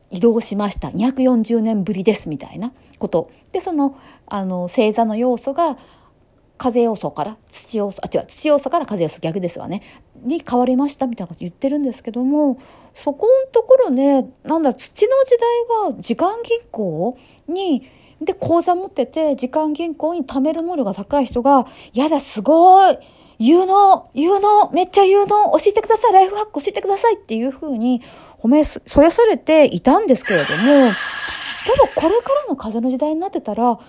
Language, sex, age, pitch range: Japanese, female, 40-59, 235-340 Hz